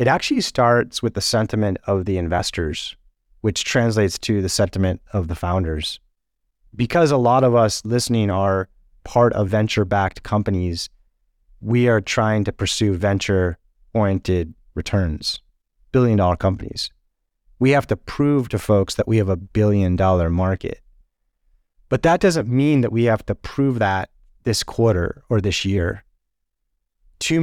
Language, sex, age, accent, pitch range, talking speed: English, male, 30-49, American, 90-115 Hz, 140 wpm